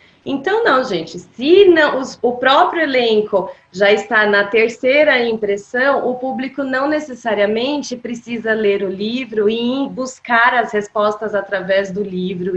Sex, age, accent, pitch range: female, 20-39, Brazilian, 195-255 Hz